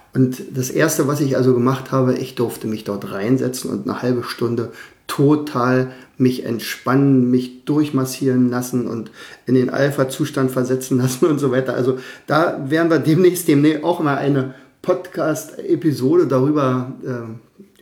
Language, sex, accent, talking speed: German, male, German, 150 wpm